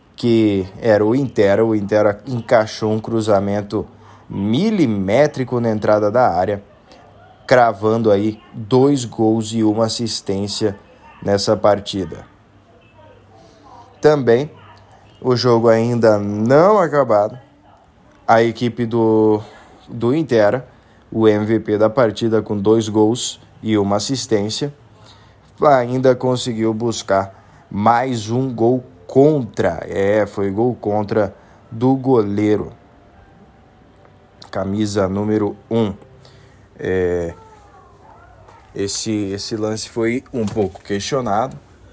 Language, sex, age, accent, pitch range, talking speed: Portuguese, male, 20-39, Brazilian, 100-115 Hz, 100 wpm